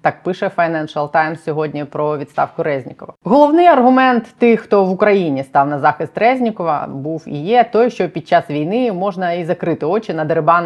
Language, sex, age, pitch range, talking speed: Ukrainian, female, 20-39, 150-185 Hz, 180 wpm